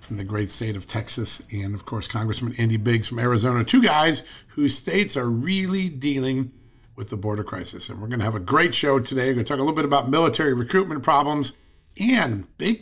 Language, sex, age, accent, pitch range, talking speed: English, male, 50-69, American, 115-170 Hz, 220 wpm